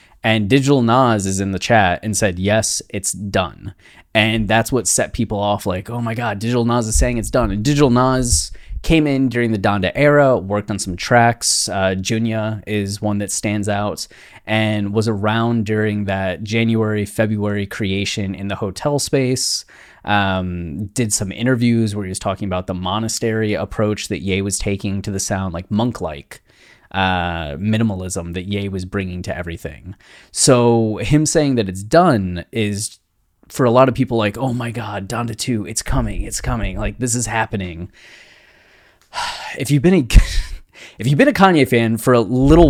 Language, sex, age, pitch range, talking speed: English, male, 20-39, 100-120 Hz, 180 wpm